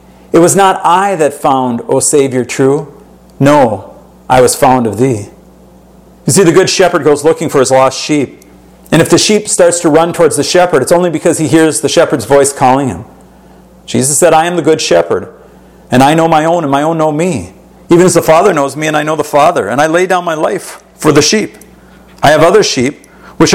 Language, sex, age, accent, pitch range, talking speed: English, male, 50-69, American, 140-170 Hz, 225 wpm